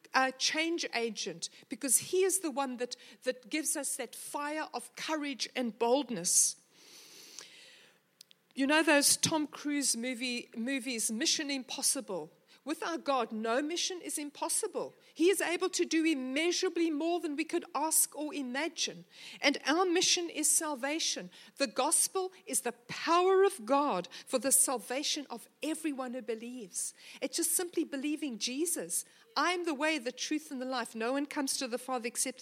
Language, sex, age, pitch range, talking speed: English, female, 60-79, 245-315 Hz, 155 wpm